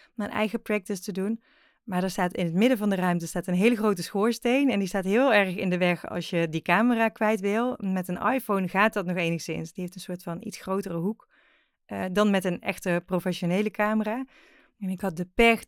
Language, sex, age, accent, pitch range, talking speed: Dutch, female, 30-49, Dutch, 185-230 Hz, 230 wpm